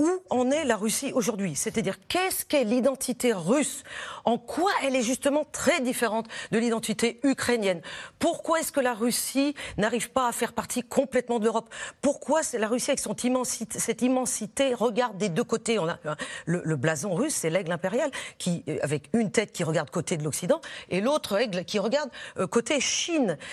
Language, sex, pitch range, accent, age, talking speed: French, female, 185-265 Hz, French, 40-59, 180 wpm